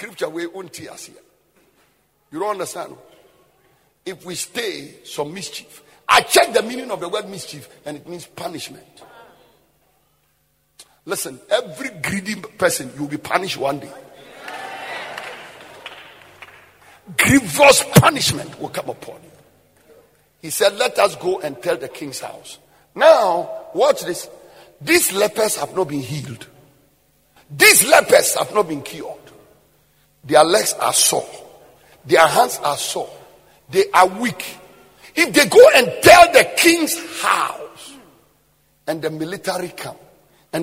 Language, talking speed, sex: English, 130 wpm, male